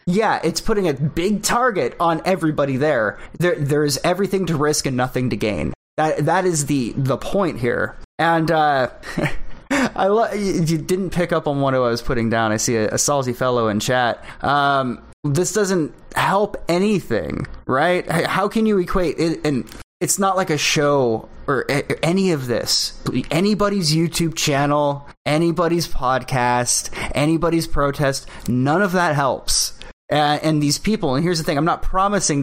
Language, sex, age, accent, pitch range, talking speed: English, male, 20-39, American, 120-165 Hz, 170 wpm